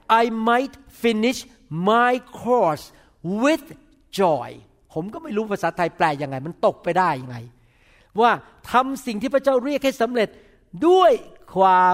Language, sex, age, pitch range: Thai, male, 60-79, 155-225 Hz